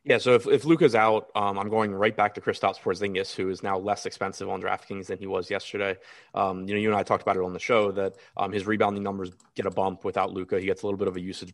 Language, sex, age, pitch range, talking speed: English, male, 20-39, 95-110 Hz, 285 wpm